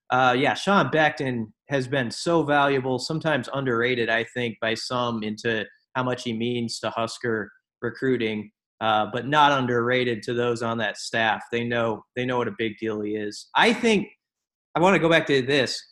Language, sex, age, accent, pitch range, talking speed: English, male, 30-49, American, 120-150 Hz, 190 wpm